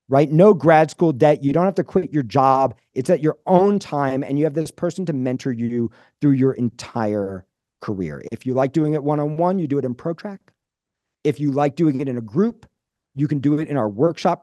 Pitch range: 130-170 Hz